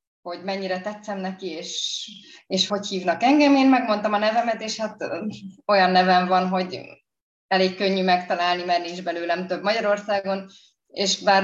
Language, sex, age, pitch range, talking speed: Hungarian, female, 20-39, 180-210 Hz, 150 wpm